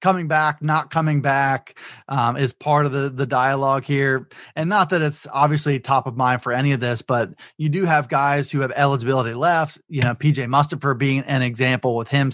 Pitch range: 130-165 Hz